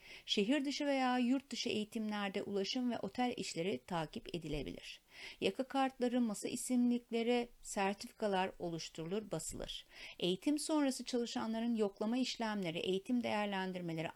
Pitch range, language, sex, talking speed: 185-240 Hz, Turkish, female, 110 wpm